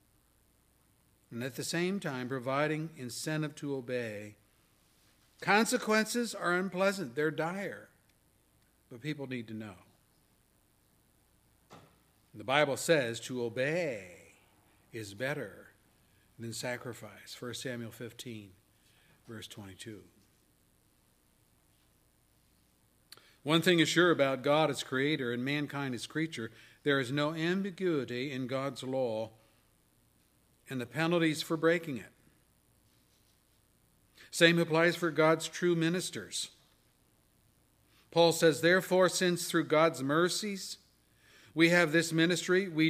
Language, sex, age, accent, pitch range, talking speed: English, male, 60-79, American, 125-180 Hz, 110 wpm